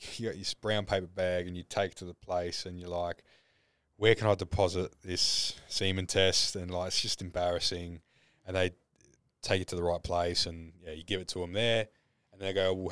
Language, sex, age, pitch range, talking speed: English, male, 20-39, 90-115 Hz, 225 wpm